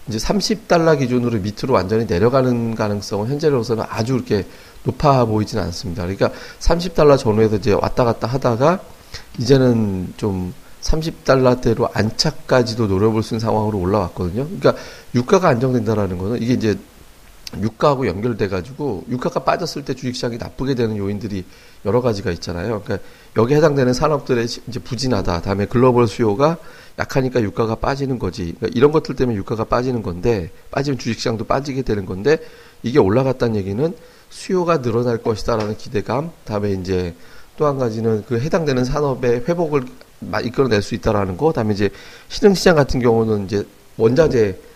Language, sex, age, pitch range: Korean, male, 40-59, 105-135 Hz